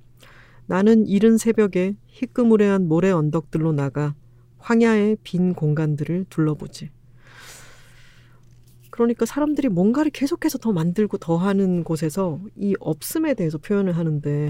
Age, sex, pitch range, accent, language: 40-59, female, 130-200 Hz, native, Korean